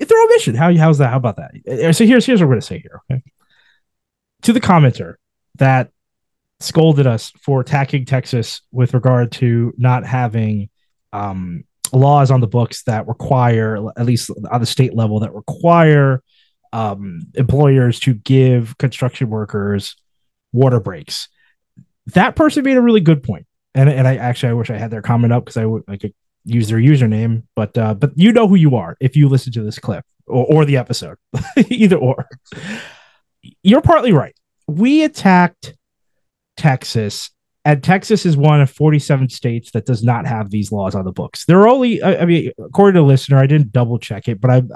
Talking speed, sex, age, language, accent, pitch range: 185 wpm, male, 20-39, English, American, 115-150 Hz